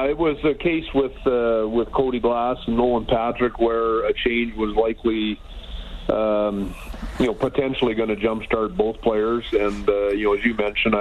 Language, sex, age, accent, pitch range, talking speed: English, male, 40-59, American, 105-120 Hz, 180 wpm